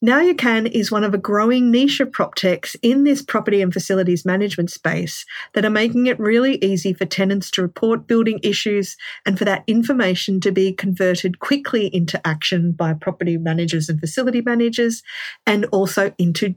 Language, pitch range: English, 180-230 Hz